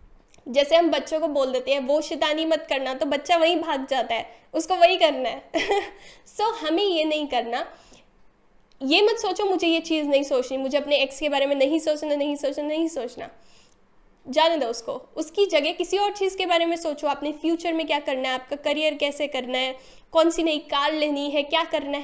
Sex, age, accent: female, 10-29, native